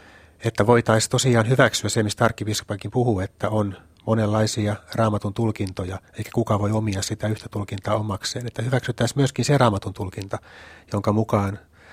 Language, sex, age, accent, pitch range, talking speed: Finnish, male, 30-49, native, 100-115 Hz, 140 wpm